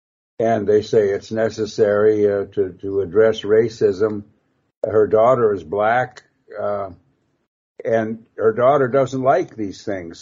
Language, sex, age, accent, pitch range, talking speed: English, male, 60-79, American, 105-135 Hz, 130 wpm